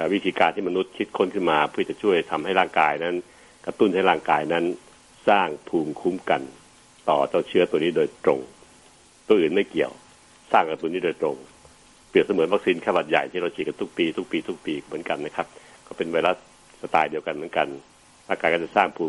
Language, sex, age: Thai, male, 60-79